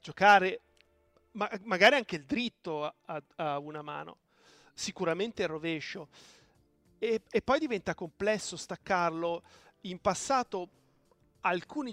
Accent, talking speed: native, 105 wpm